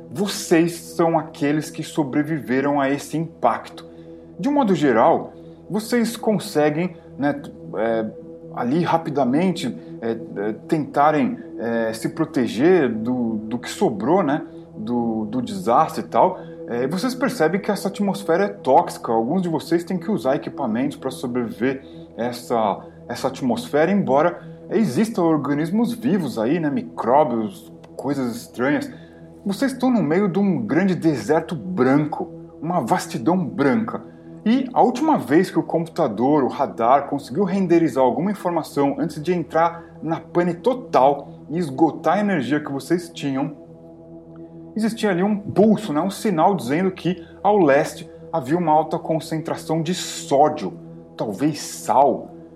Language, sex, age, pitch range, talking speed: Portuguese, male, 20-39, 125-180 Hz, 135 wpm